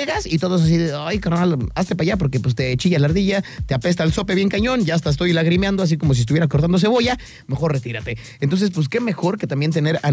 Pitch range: 140-195 Hz